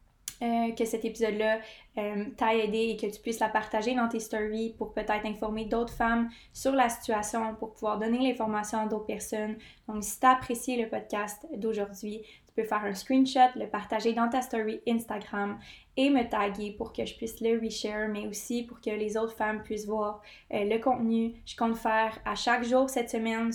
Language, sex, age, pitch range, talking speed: French, female, 20-39, 215-235 Hz, 200 wpm